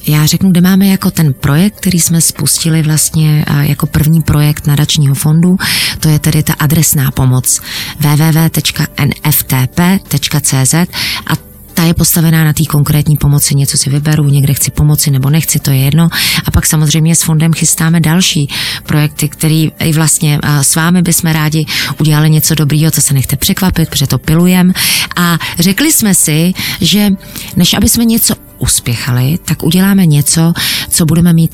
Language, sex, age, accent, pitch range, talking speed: Czech, female, 30-49, native, 150-175 Hz, 155 wpm